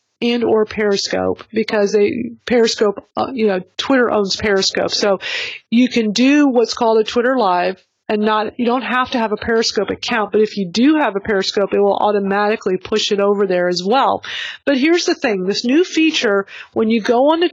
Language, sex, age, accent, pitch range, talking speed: English, female, 40-59, American, 210-255 Hz, 195 wpm